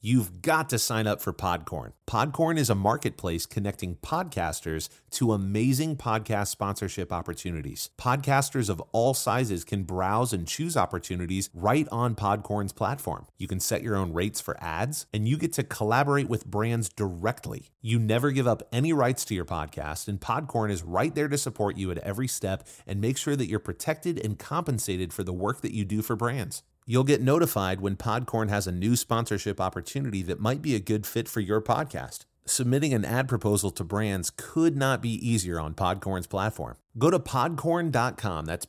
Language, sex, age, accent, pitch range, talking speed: English, male, 30-49, American, 95-130 Hz, 185 wpm